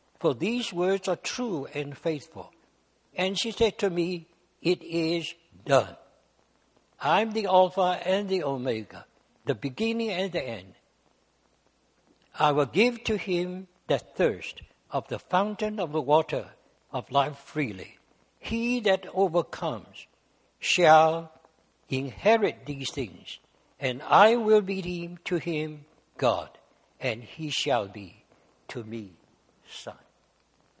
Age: 60-79